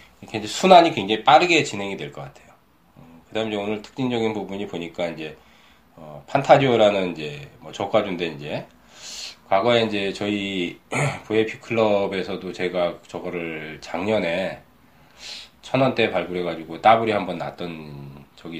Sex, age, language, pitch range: male, 20-39, Korean, 85-115 Hz